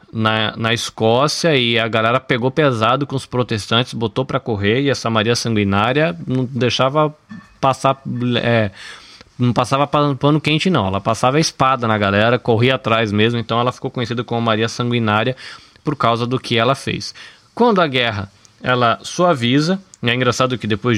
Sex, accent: male, Brazilian